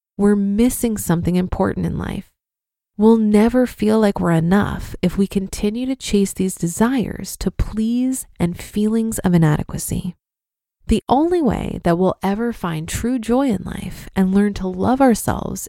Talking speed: 155 wpm